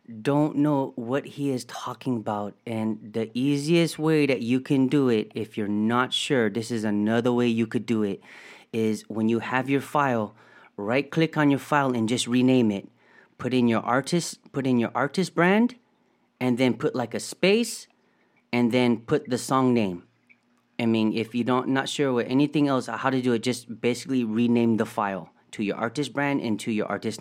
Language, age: English, 30-49